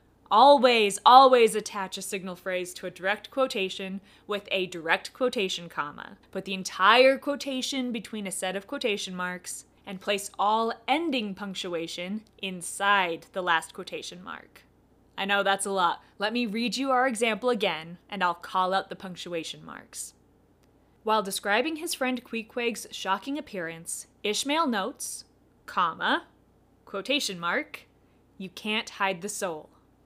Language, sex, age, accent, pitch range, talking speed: English, female, 20-39, American, 190-240 Hz, 140 wpm